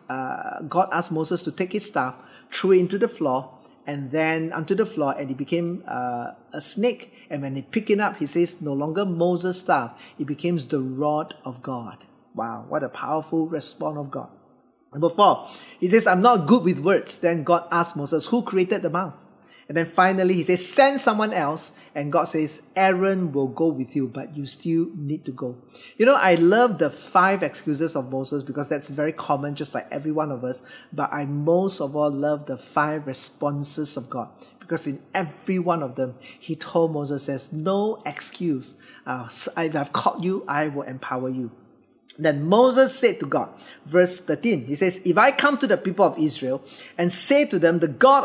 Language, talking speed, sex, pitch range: English, 200 wpm, male, 145-190 Hz